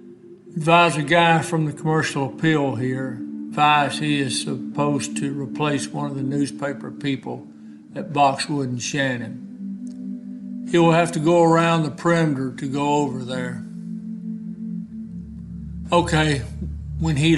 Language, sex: English, male